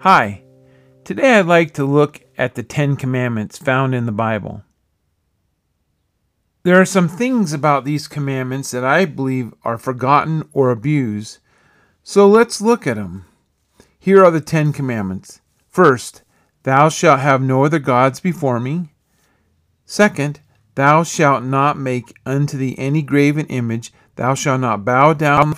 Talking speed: 145 wpm